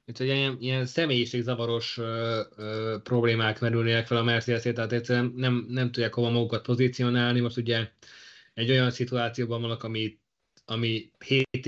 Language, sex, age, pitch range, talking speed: Hungarian, male, 20-39, 120-140 Hz, 135 wpm